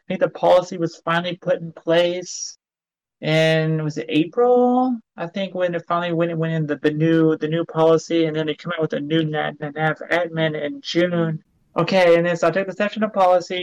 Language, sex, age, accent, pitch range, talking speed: English, male, 30-49, American, 155-175 Hz, 215 wpm